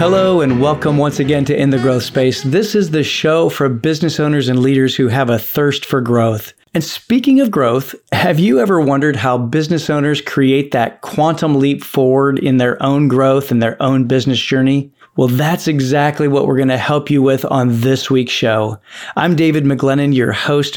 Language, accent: English, American